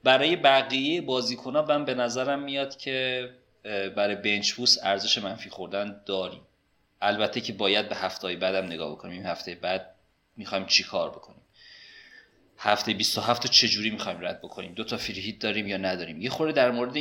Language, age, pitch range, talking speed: Persian, 30-49, 100-125 Hz, 160 wpm